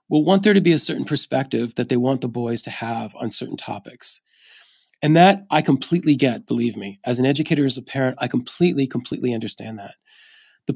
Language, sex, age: English, male, 40-59